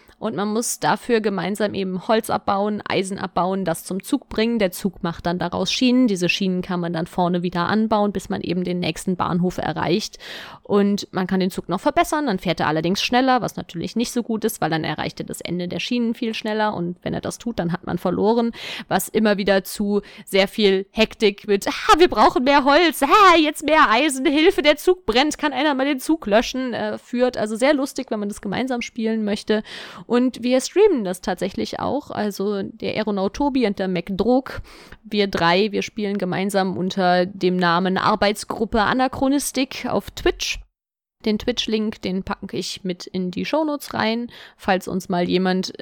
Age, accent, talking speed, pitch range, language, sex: 20-39, German, 195 wpm, 185-240 Hz, German, female